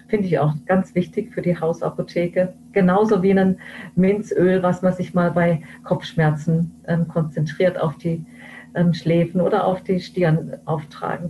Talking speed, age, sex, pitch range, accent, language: 155 wpm, 40-59, female, 165-190 Hz, German, German